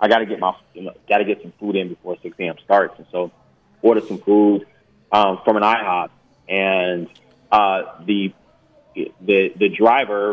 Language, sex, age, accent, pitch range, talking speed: English, male, 30-49, American, 100-120 Hz, 175 wpm